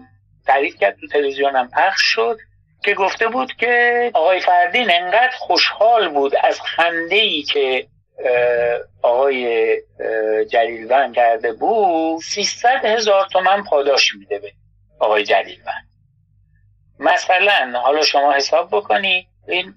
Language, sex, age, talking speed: Persian, male, 50-69, 105 wpm